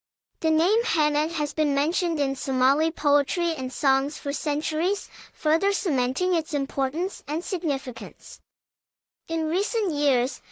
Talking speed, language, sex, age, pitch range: 125 wpm, English, male, 10-29, 270-335 Hz